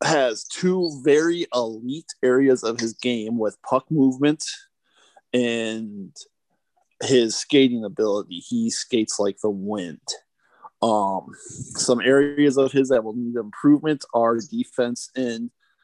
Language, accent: English, American